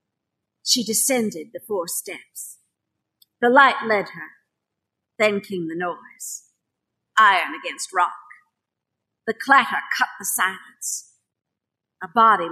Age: 50-69